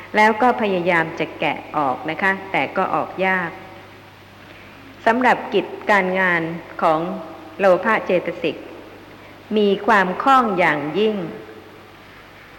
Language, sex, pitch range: Thai, female, 155-205 Hz